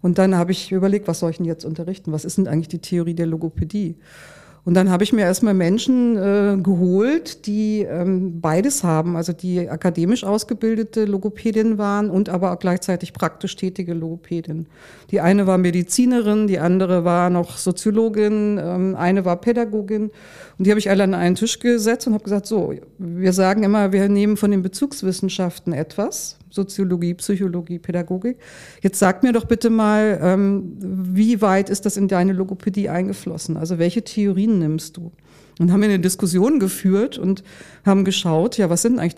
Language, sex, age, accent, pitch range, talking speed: German, female, 50-69, German, 175-210 Hz, 175 wpm